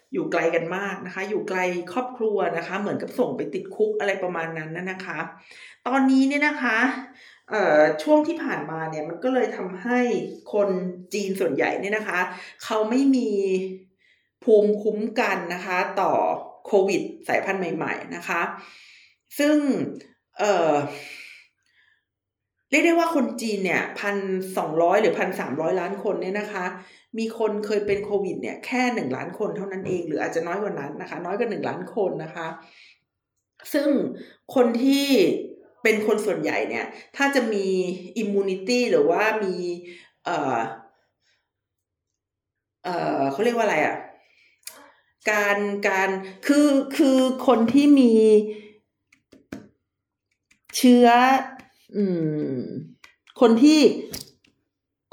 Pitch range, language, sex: 185-255 Hz, Thai, female